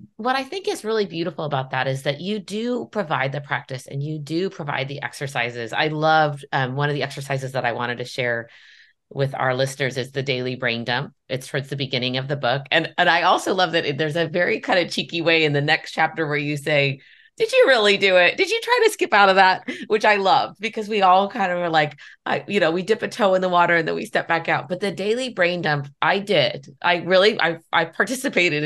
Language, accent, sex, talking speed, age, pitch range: English, American, female, 250 wpm, 30-49, 140-185 Hz